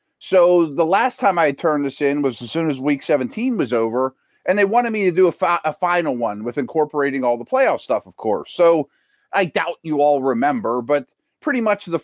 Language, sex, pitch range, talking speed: English, male, 135-185 Hz, 220 wpm